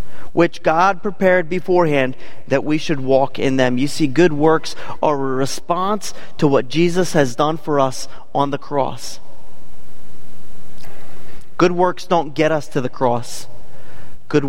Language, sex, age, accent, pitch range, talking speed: English, male, 30-49, American, 135-195 Hz, 150 wpm